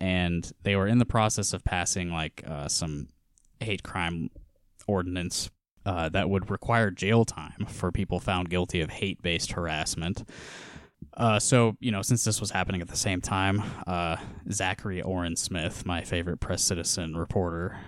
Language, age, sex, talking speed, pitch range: English, 20-39, male, 160 wpm, 85-110 Hz